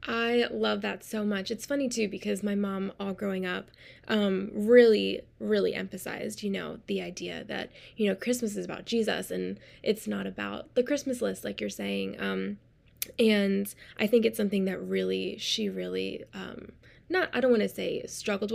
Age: 20-39